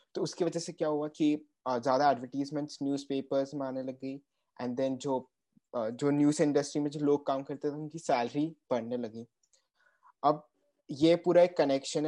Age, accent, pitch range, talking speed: 20-39, native, 130-150 Hz, 175 wpm